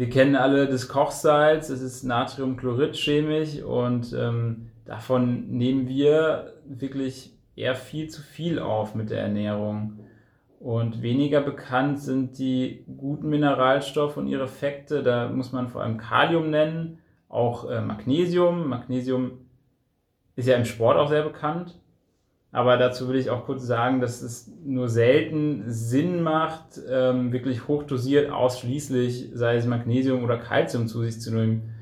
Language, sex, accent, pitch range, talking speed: German, male, German, 115-135 Hz, 140 wpm